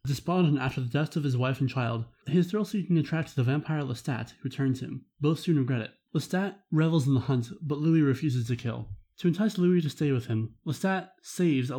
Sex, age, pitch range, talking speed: male, 20-39, 130-170 Hz, 215 wpm